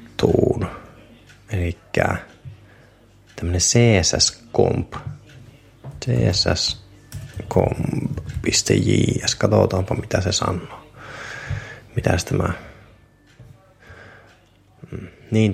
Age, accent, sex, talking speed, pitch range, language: 20-39, native, male, 40 wpm, 85-115 Hz, Finnish